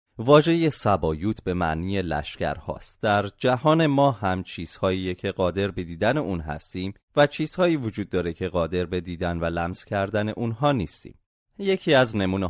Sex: male